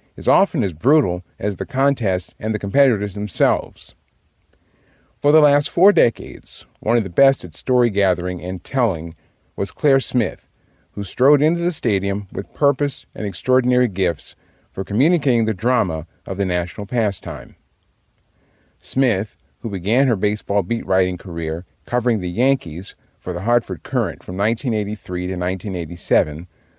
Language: English